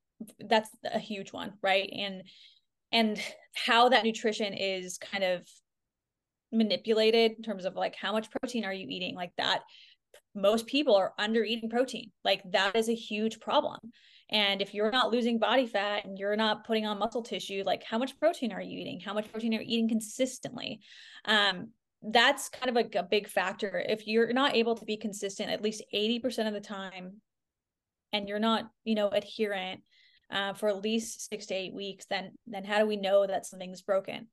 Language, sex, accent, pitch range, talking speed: English, female, American, 200-230 Hz, 190 wpm